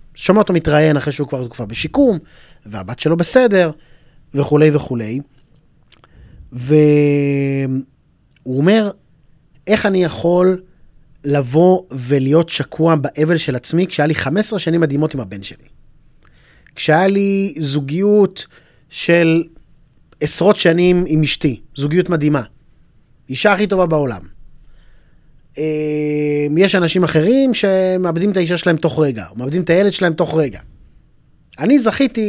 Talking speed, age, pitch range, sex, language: 120 wpm, 30-49, 140-180 Hz, male, Hebrew